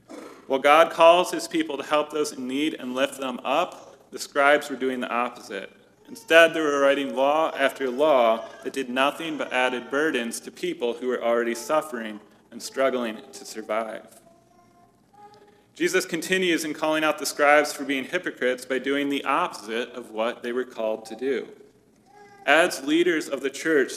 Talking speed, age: 175 wpm, 30-49